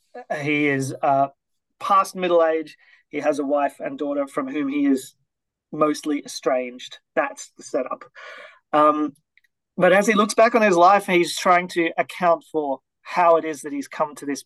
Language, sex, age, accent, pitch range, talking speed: English, male, 30-49, Australian, 140-170 Hz, 180 wpm